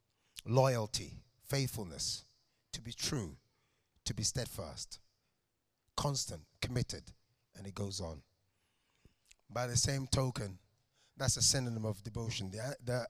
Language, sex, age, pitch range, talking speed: English, male, 30-49, 110-135 Hz, 115 wpm